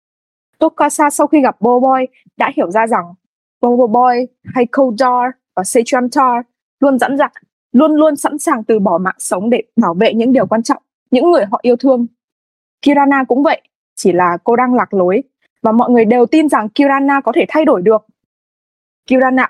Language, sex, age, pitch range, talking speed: English, female, 20-39, 225-285 Hz, 190 wpm